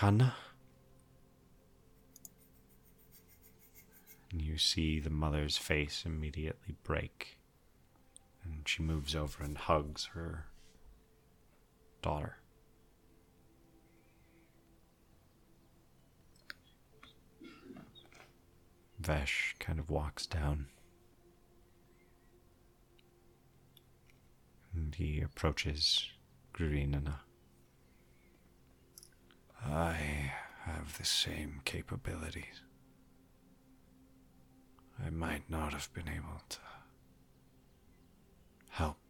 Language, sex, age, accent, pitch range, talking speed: English, male, 40-59, American, 65-85 Hz, 60 wpm